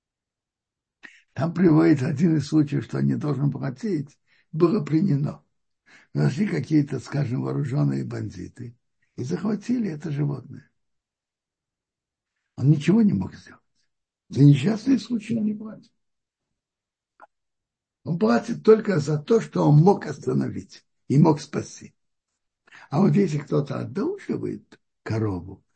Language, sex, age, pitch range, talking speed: Russian, male, 60-79, 130-190 Hz, 115 wpm